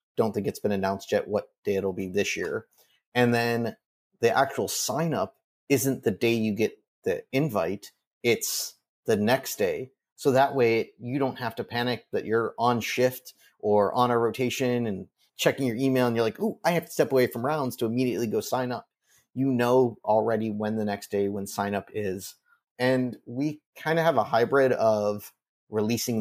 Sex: male